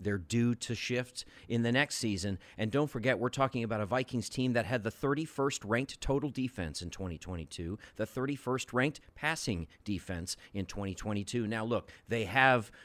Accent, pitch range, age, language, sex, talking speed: American, 100-130 Hz, 40-59, English, male, 175 wpm